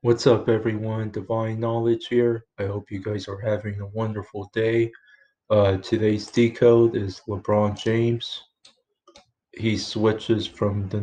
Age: 20-39